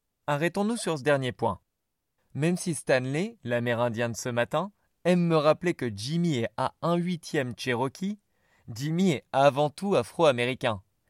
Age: 20-39